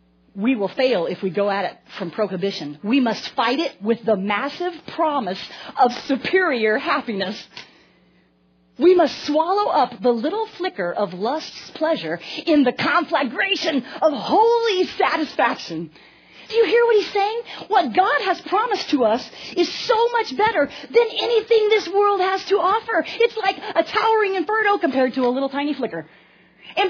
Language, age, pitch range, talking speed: English, 40-59, 285-420 Hz, 160 wpm